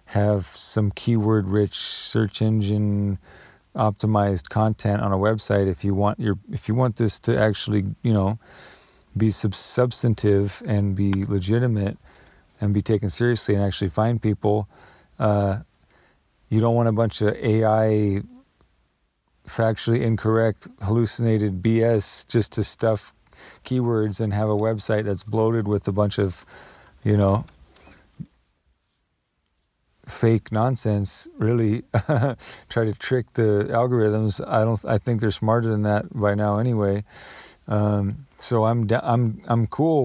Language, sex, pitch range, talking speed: English, male, 105-115 Hz, 135 wpm